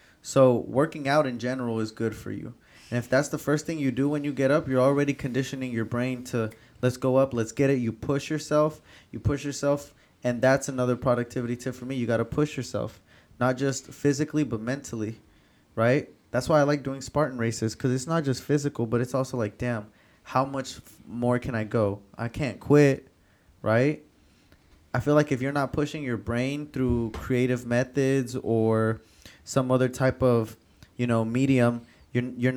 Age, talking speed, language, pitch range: 20-39, 195 wpm, English, 115-135 Hz